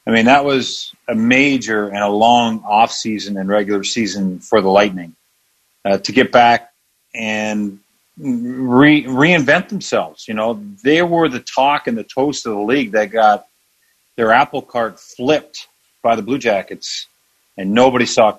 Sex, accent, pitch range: male, American, 100-120 Hz